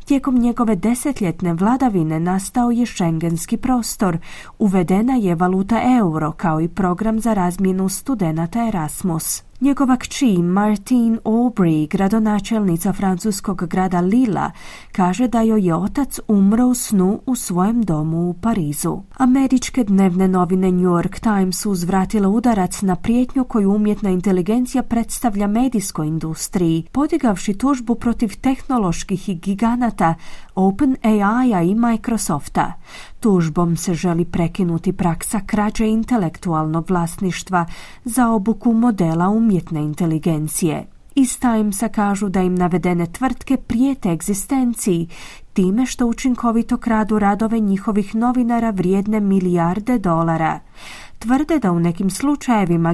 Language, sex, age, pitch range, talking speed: Croatian, female, 30-49, 180-235 Hz, 120 wpm